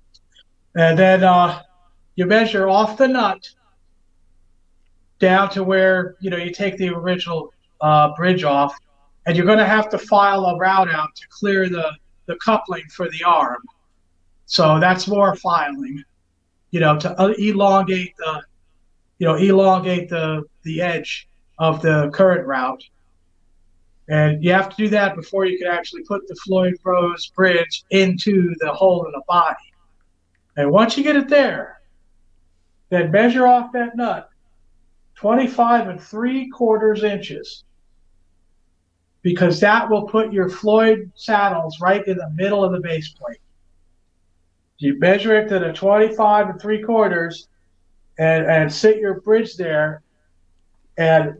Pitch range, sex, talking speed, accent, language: 140-200 Hz, male, 140 wpm, American, English